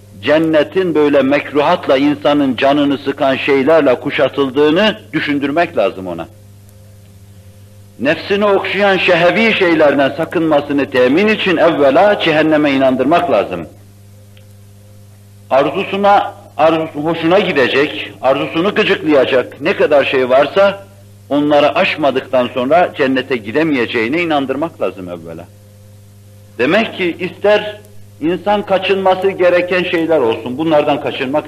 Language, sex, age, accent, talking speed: Turkish, male, 60-79, native, 95 wpm